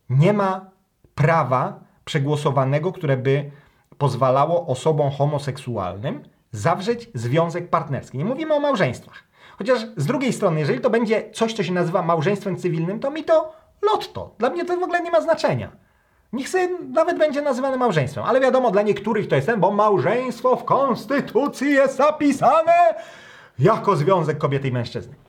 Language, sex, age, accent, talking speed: Polish, male, 30-49, native, 155 wpm